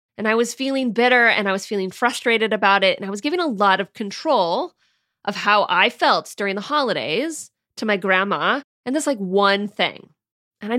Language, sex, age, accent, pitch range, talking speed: English, female, 30-49, American, 195-265 Hz, 205 wpm